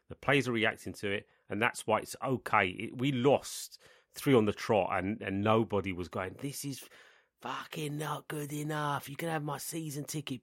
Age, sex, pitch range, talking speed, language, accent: 30-49, male, 95-125 Hz, 195 wpm, English, British